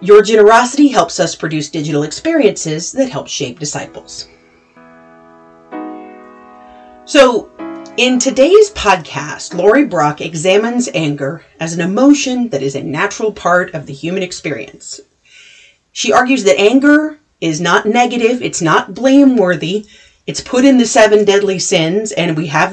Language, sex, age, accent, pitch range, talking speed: English, female, 30-49, American, 160-220 Hz, 135 wpm